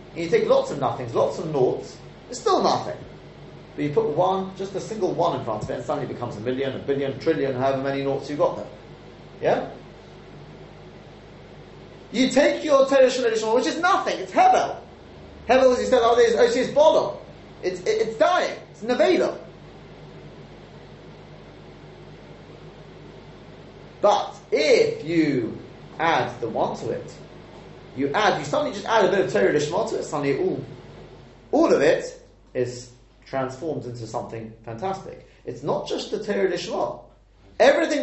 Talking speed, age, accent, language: 155 wpm, 30-49, British, English